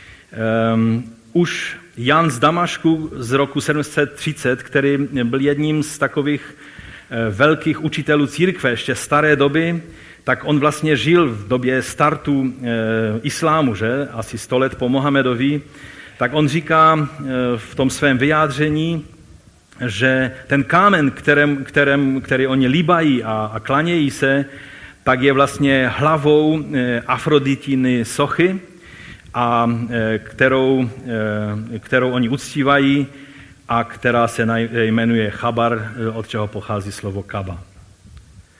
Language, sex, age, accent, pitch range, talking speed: Czech, male, 40-59, native, 115-145 Hz, 120 wpm